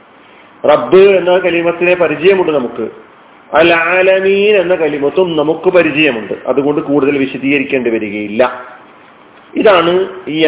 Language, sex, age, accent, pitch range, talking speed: Malayalam, male, 40-59, native, 150-195 Hz, 95 wpm